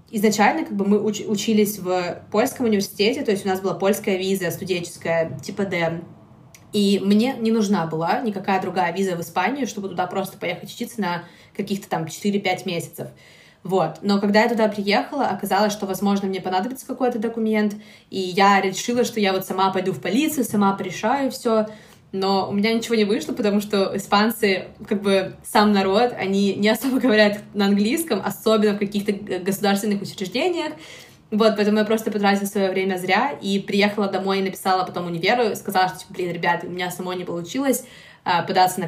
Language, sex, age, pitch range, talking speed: Ukrainian, female, 20-39, 185-215 Hz, 180 wpm